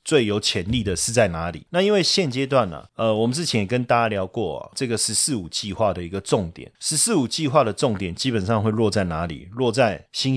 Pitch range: 105-135 Hz